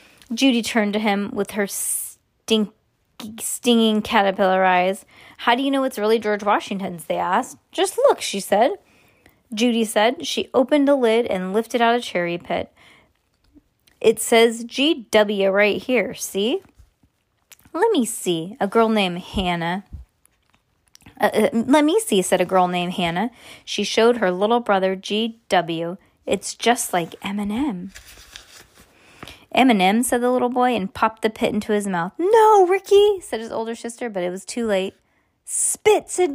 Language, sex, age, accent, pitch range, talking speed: English, female, 20-39, American, 195-260 Hz, 160 wpm